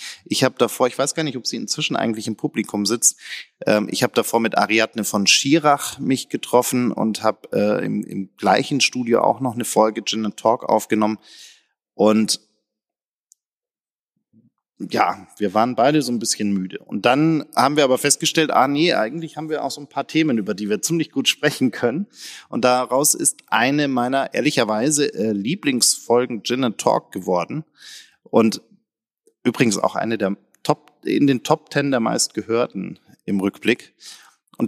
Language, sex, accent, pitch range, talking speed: German, male, German, 110-145 Hz, 170 wpm